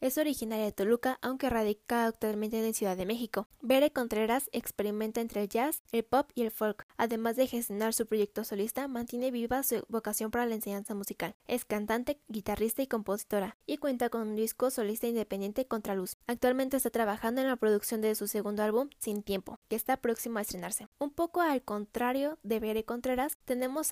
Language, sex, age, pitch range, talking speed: Spanish, female, 10-29, 215-255 Hz, 190 wpm